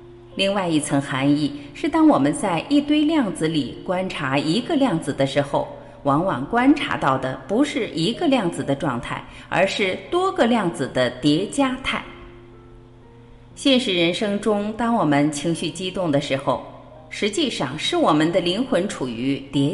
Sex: female